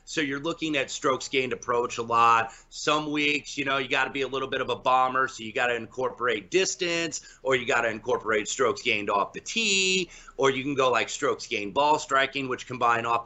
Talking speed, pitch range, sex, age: 230 wpm, 115-145 Hz, male, 30-49